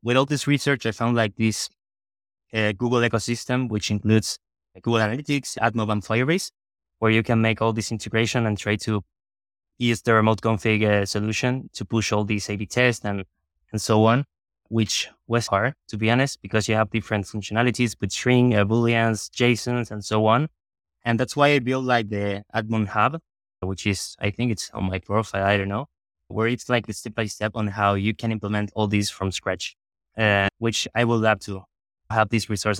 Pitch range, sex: 105-120 Hz, male